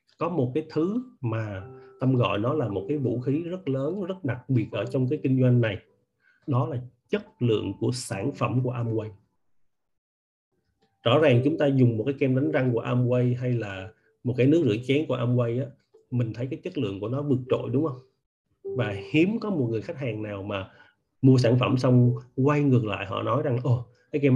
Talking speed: 215 wpm